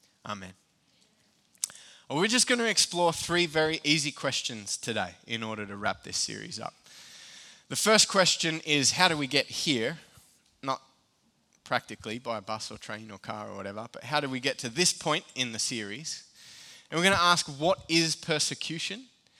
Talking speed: 180 wpm